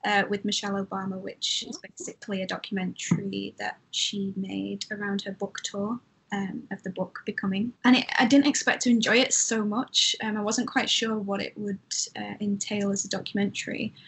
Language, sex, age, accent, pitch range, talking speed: English, female, 10-29, British, 200-225 Hz, 190 wpm